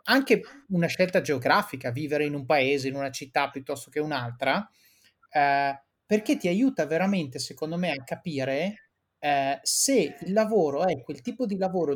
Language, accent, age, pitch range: Italian, native, 30-49, 140-200 Hz